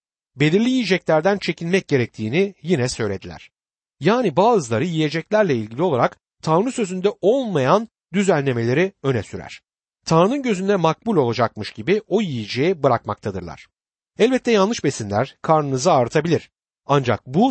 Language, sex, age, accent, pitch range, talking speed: Turkish, male, 60-79, native, 120-195 Hz, 110 wpm